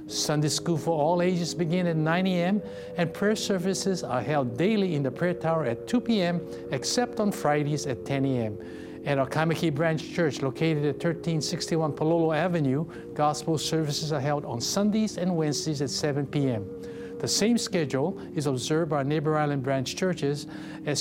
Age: 60-79